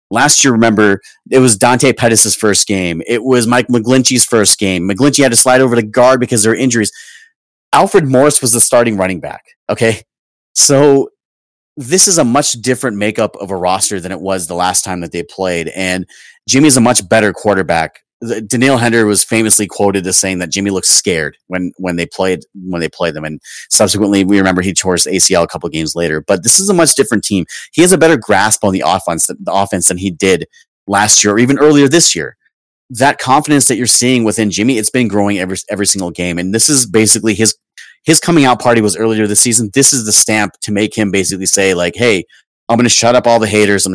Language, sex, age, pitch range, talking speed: English, male, 30-49, 95-130 Hz, 225 wpm